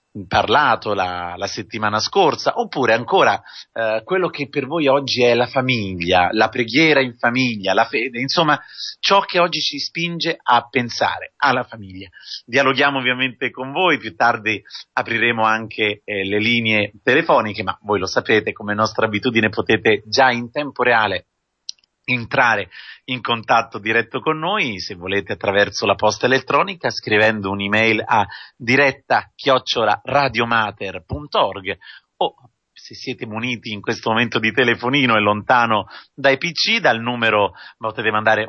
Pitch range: 110-135 Hz